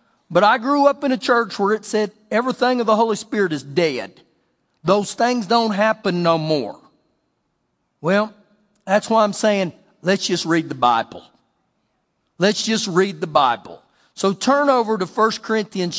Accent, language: American, English